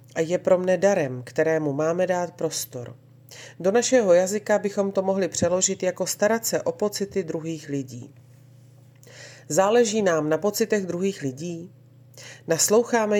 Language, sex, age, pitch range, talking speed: Slovak, female, 40-59, 135-185 Hz, 135 wpm